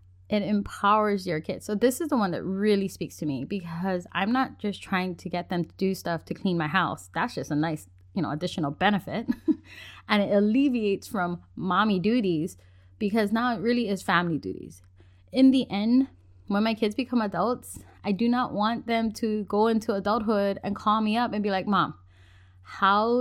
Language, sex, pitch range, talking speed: English, female, 165-225 Hz, 195 wpm